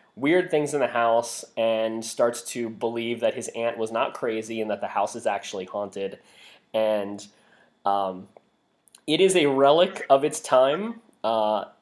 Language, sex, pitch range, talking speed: English, male, 110-155 Hz, 160 wpm